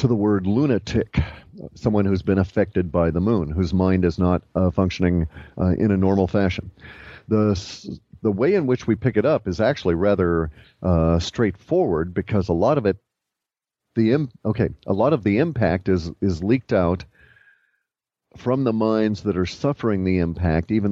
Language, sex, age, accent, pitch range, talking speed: English, male, 50-69, American, 90-105 Hz, 180 wpm